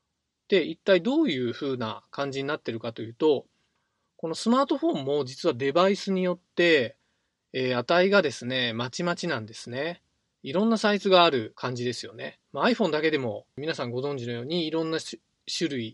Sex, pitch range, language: male, 125-185 Hz, Japanese